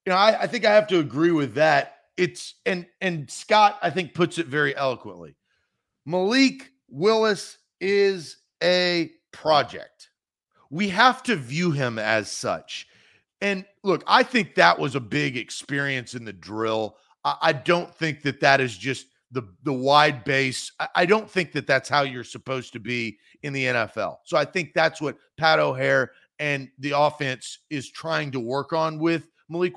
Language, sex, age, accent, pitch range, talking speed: English, male, 40-59, American, 140-190 Hz, 175 wpm